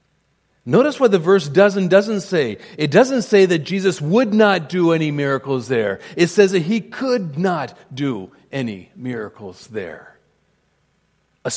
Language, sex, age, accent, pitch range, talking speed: English, male, 40-59, American, 150-195 Hz, 155 wpm